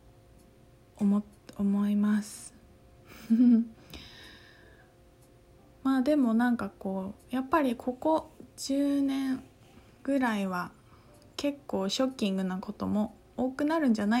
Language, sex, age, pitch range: Japanese, female, 20-39, 200-260 Hz